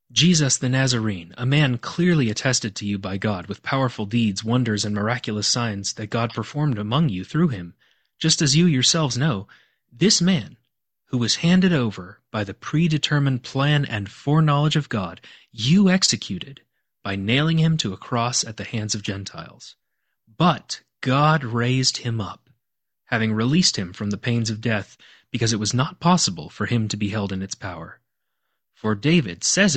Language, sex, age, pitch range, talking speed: English, male, 30-49, 105-140 Hz, 175 wpm